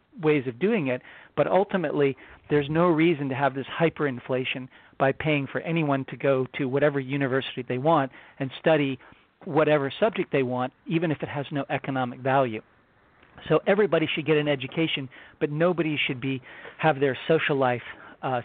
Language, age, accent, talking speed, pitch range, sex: English, 40-59, American, 170 wpm, 130-155 Hz, male